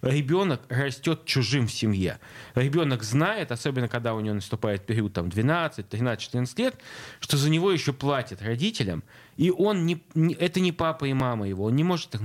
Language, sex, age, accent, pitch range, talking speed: Russian, male, 20-39, native, 115-155 Hz, 170 wpm